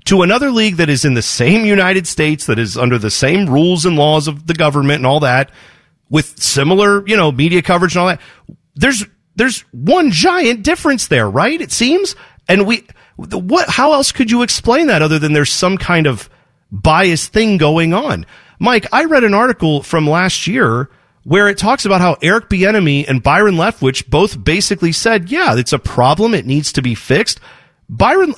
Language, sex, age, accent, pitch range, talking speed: English, male, 40-59, American, 145-225 Hz, 195 wpm